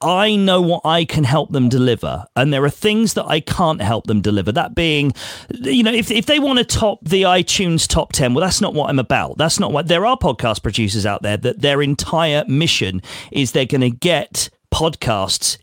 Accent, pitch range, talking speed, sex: British, 120-180 Hz, 220 wpm, male